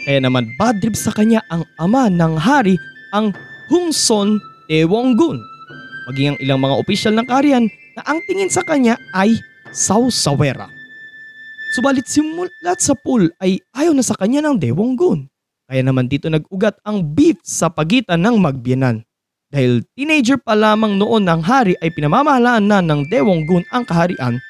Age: 20-39